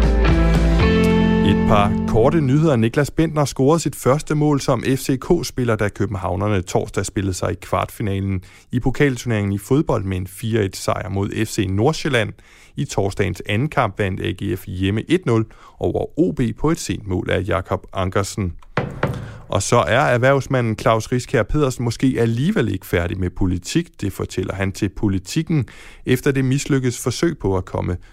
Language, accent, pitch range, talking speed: Danish, native, 95-130 Hz, 150 wpm